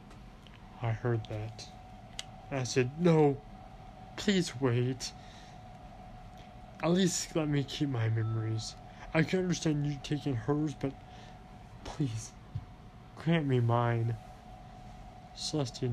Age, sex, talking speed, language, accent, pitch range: 20-39, male, 105 wpm, English, American, 105-140 Hz